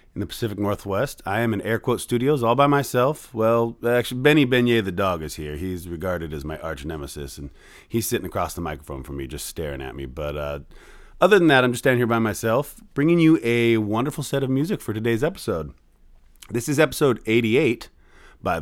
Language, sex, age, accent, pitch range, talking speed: English, male, 30-49, American, 105-135 Hz, 210 wpm